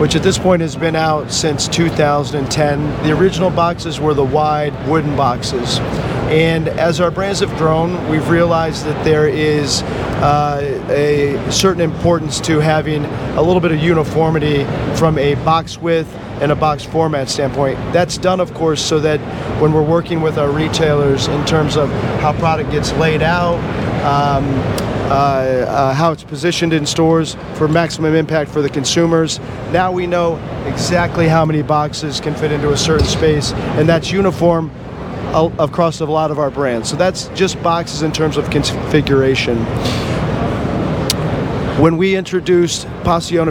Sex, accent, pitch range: male, American, 145-165 Hz